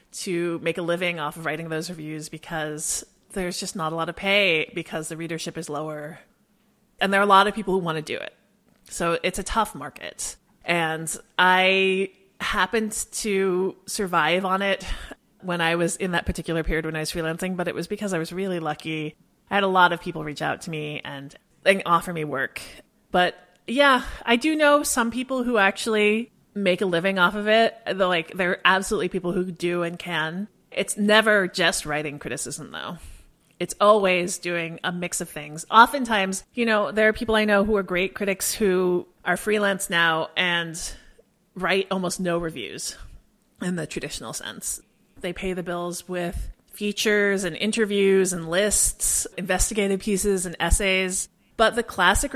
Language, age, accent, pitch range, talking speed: English, 30-49, American, 170-205 Hz, 180 wpm